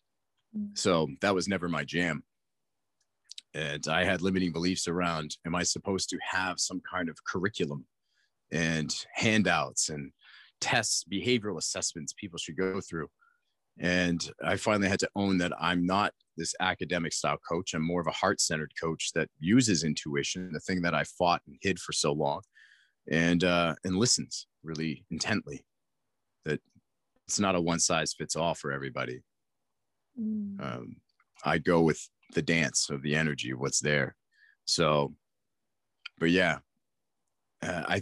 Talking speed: 145 wpm